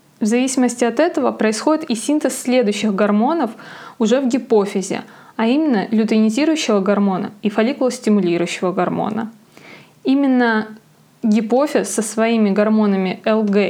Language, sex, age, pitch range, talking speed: Russian, female, 20-39, 210-245 Hz, 110 wpm